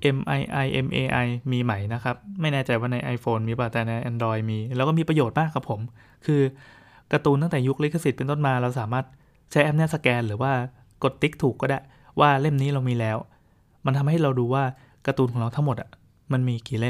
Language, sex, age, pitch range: Thai, male, 20-39, 115-135 Hz